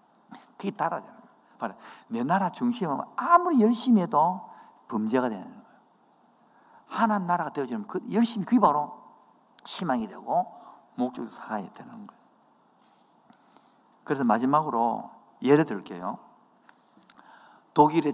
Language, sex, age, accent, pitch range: Korean, male, 50-69, native, 150-225 Hz